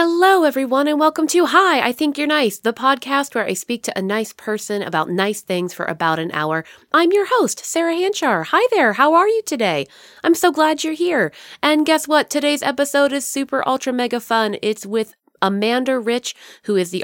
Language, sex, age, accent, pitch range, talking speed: English, female, 30-49, American, 170-255 Hz, 210 wpm